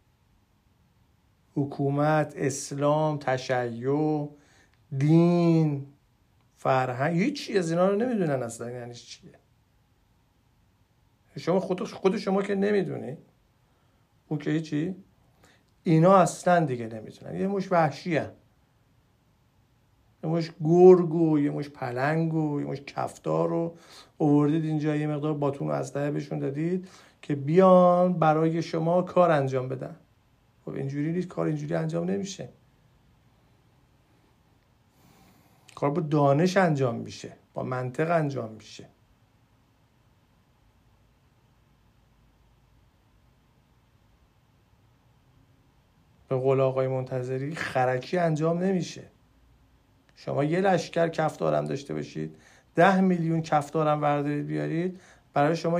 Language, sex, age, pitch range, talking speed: Persian, male, 50-69, 120-165 Hz, 100 wpm